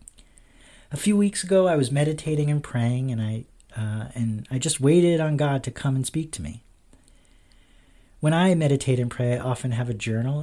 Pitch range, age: 115-145 Hz, 40-59